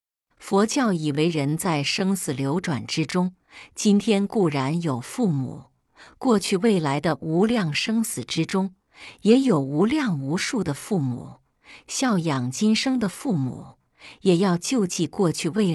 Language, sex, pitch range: Chinese, female, 150-215 Hz